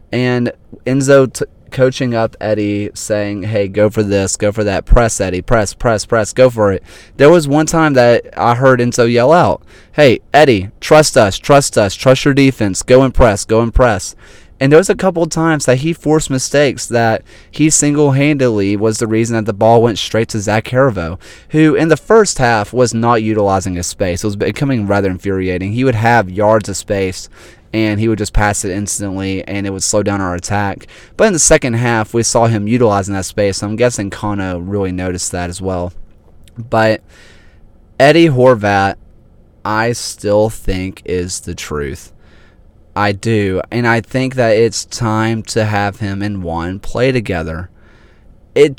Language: English